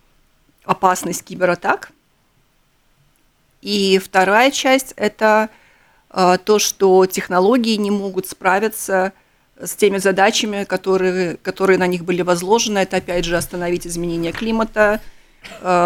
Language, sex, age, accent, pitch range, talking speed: Russian, female, 40-59, native, 180-225 Hz, 105 wpm